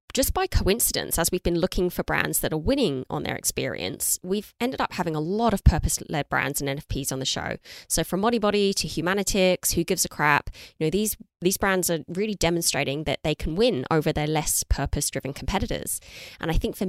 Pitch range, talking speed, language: 150-180 Hz, 210 wpm, English